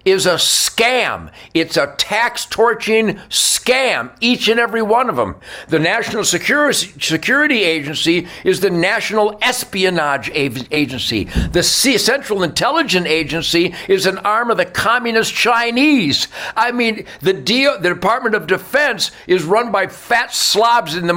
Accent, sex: American, male